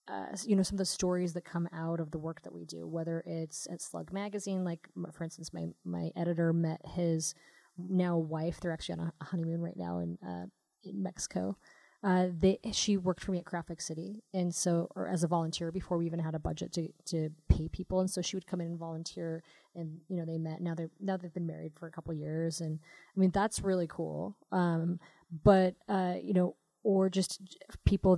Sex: female